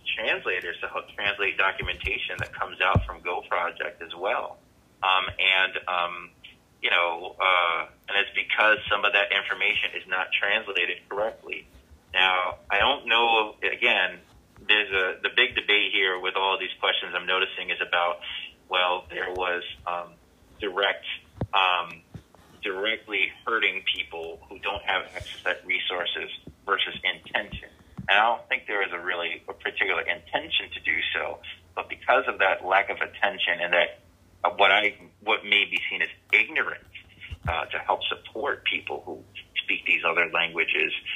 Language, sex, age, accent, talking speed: English, male, 30-49, American, 160 wpm